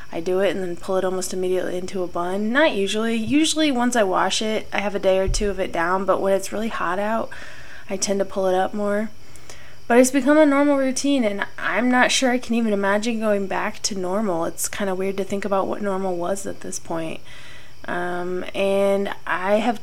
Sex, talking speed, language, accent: female, 230 wpm, English, American